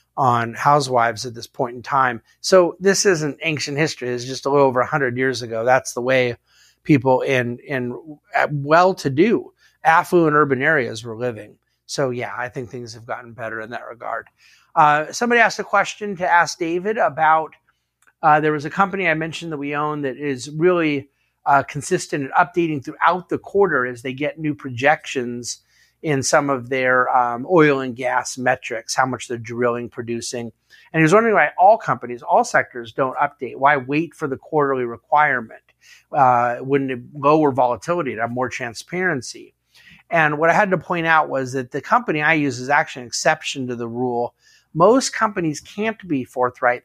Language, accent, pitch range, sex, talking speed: English, American, 125-160 Hz, male, 185 wpm